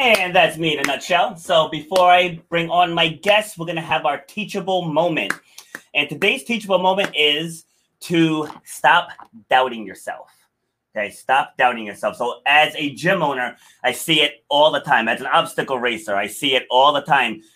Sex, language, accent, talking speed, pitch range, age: male, English, American, 185 wpm, 140-180 Hz, 30-49